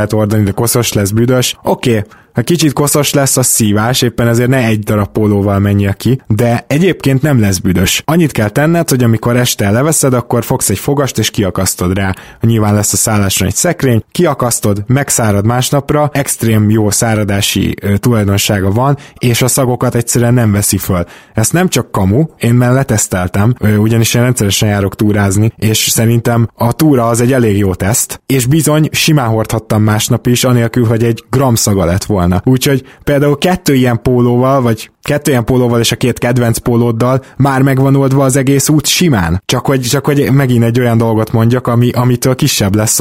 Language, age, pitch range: Hungarian, 20-39, 105-135 Hz